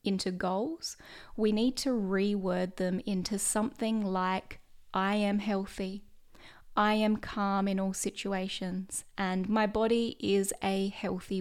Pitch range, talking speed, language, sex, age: 190-225 Hz, 130 wpm, English, female, 10-29